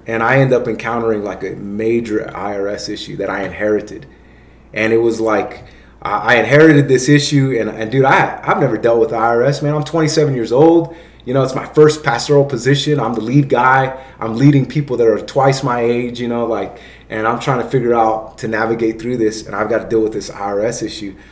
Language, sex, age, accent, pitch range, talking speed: English, male, 30-49, American, 110-145 Hz, 215 wpm